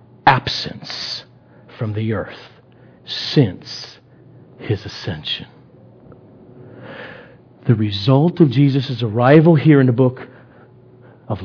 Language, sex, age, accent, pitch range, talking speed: English, male, 50-69, American, 115-180 Hz, 90 wpm